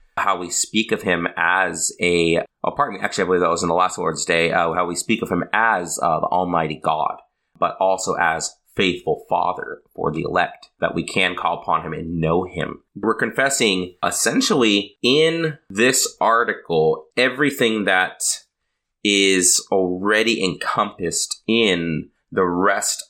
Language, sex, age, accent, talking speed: English, male, 30-49, American, 160 wpm